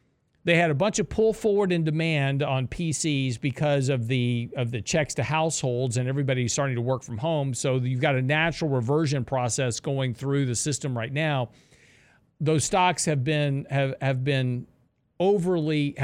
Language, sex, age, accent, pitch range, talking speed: English, male, 50-69, American, 125-150 Hz, 175 wpm